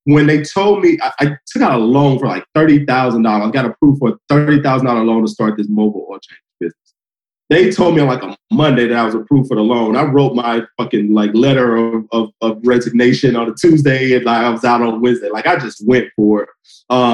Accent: American